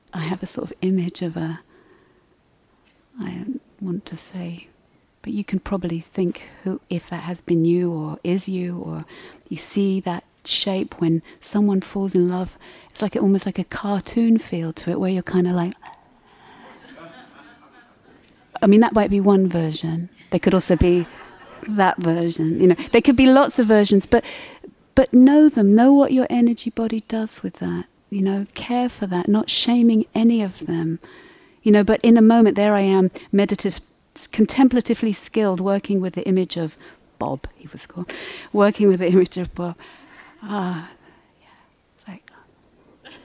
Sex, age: female, 30-49